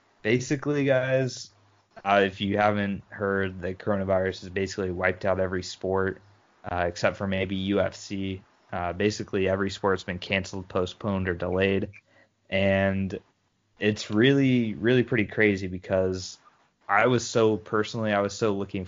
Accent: American